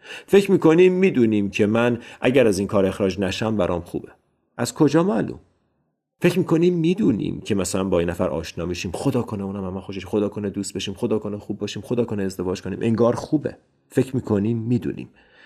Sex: male